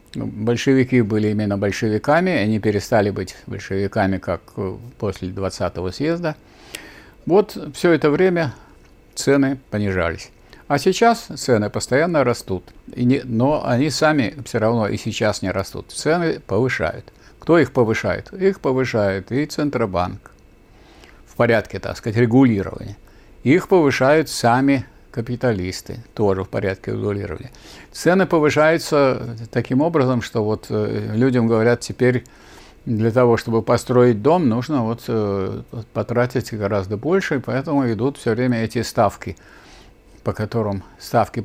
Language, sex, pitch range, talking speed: Russian, male, 105-130 Hz, 125 wpm